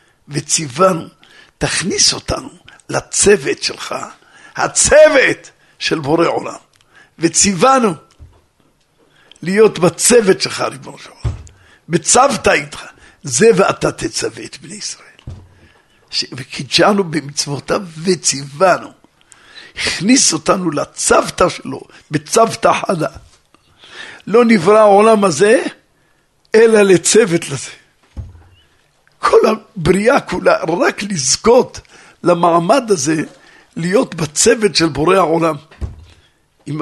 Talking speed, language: 80 wpm, Hebrew